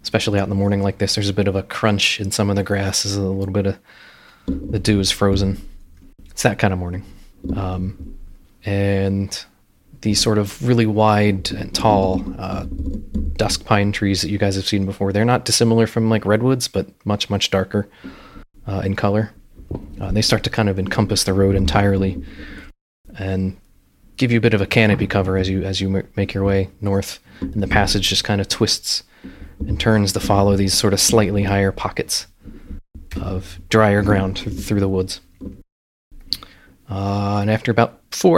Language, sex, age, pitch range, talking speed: English, male, 20-39, 95-110 Hz, 190 wpm